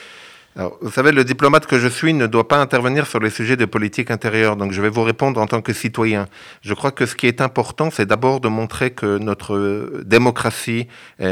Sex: male